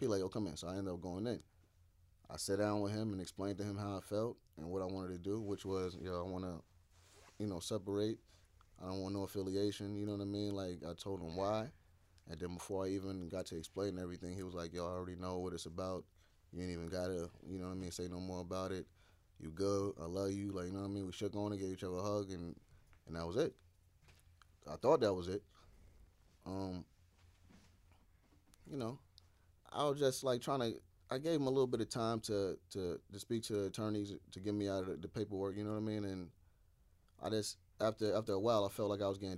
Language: English